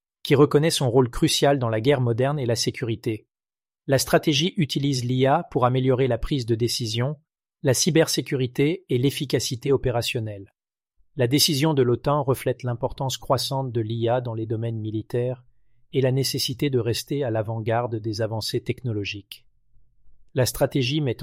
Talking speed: 150 wpm